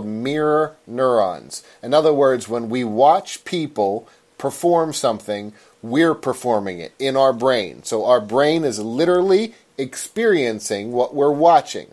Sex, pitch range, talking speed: male, 140-195 Hz, 130 wpm